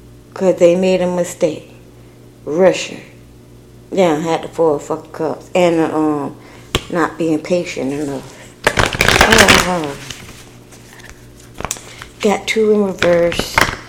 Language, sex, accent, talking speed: English, female, American, 105 wpm